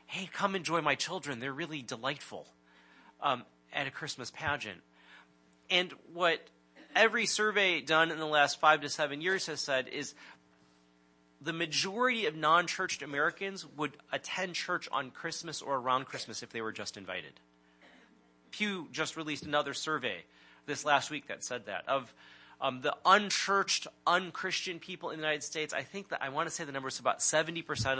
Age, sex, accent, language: 30-49, male, American, English